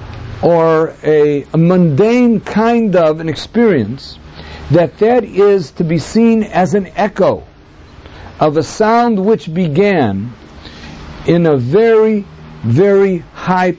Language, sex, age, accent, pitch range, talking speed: English, male, 50-69, American, 100-160 Hz, 120 wpm